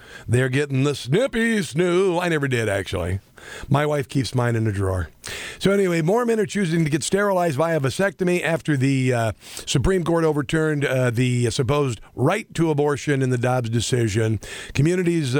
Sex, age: male, 50-69